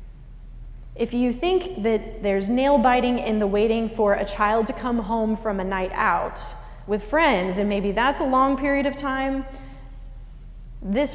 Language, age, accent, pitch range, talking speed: English, 20-39, American, 190-235 Hz, 165 wpm